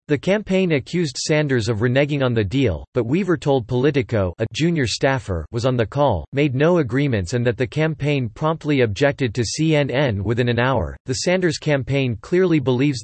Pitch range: 120-150 Hz